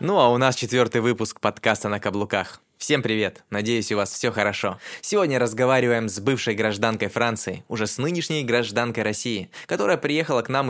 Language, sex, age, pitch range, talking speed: Russian, male, 20-39, 110-150 Hz, 175 wpm